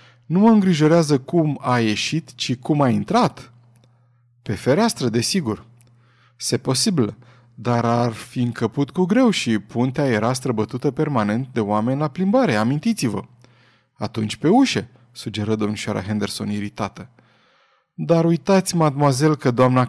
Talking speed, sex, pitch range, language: 130 wpm, male, 115-155 Hz, Romanian